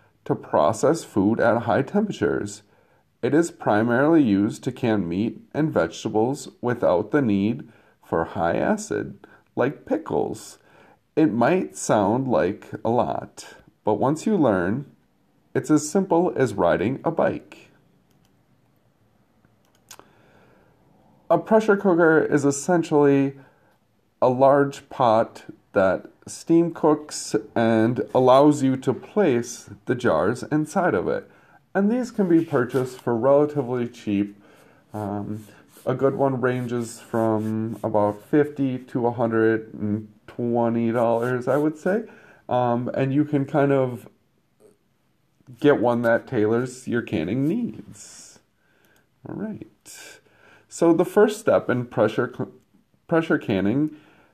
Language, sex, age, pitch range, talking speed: English, male, 40-59, 110-150 Hz, 115 wpm